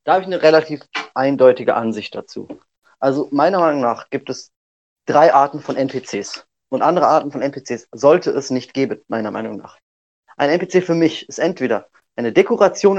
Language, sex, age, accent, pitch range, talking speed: German, male, 30-49, German, 130-165 Hz, 175 wpm